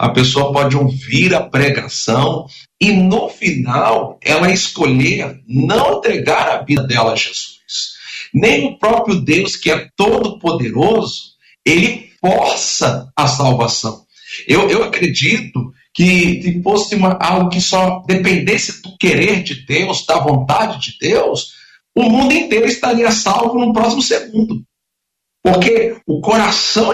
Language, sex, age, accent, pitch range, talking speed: Portuguese, male, 50-69, Brazilian, 140-215 Hz, 130 wpm